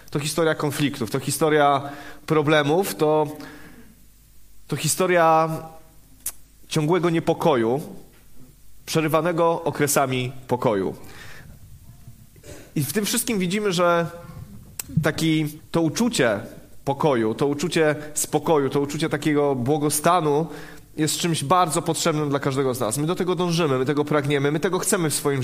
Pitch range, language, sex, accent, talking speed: 140-165 Hz, Polish, male, native, 120 wpm